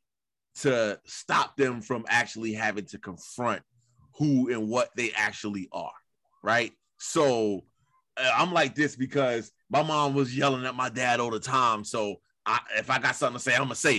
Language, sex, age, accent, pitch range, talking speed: English, male, 30-49, American, 105-140 Hz, 175 wpm